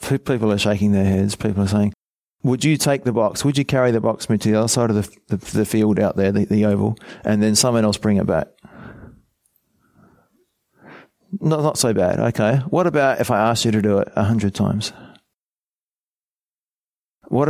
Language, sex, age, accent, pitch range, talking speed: English, male, 30-49, Australian, 105-140 Hz, 195 wpm